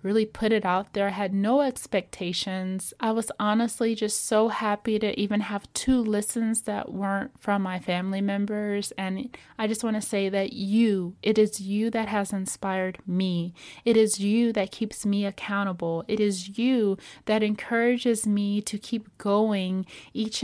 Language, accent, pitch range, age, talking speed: English, American, 195-235 Hz, 30-49, 170 wpm